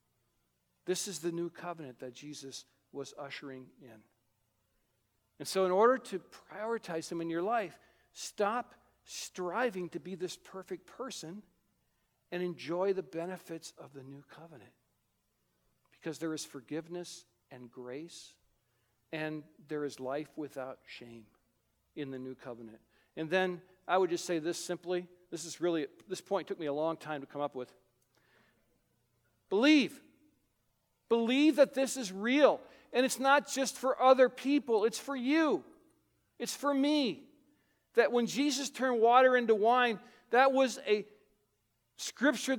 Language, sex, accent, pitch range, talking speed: English, male, American, 150-230 Hz, 145 wpm